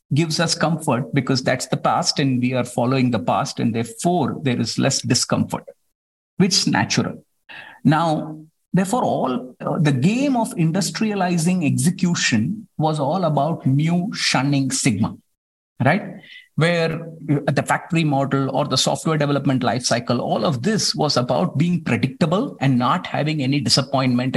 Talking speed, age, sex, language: 145 wpm, 50-69, male, English